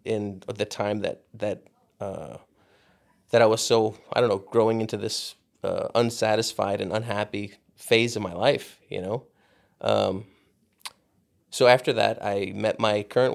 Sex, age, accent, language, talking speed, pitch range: male, 20-39, American, English, 155 wpm, 100-125 Hz